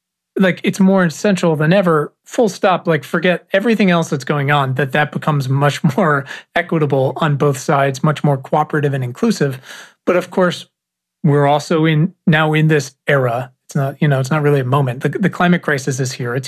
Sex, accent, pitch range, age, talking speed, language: male, American, 140-165 Hz, 40-59, 200 wpm, English